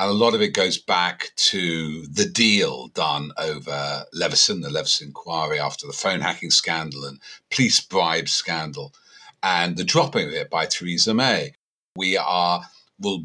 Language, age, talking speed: English, 50-69, 165 wpm